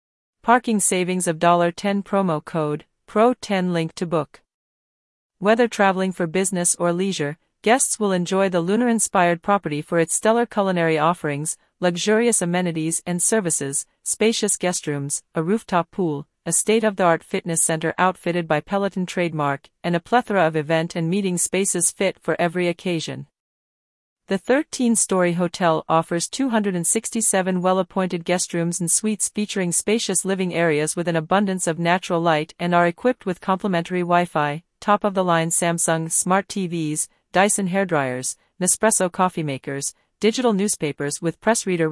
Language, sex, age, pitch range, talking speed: English, female, 40-59, 165-200 Hz, 135 wpm